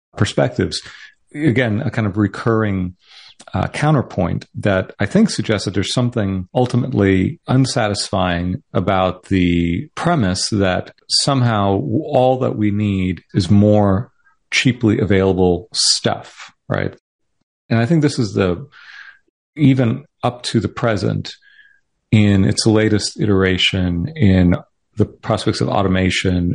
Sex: male